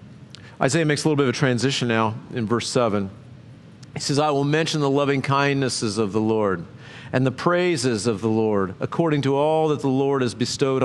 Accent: American